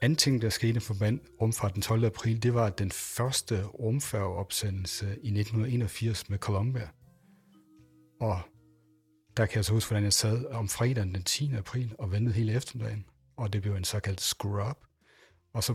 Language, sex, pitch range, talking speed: Danish, male, 100-120 Hz, 170 wpm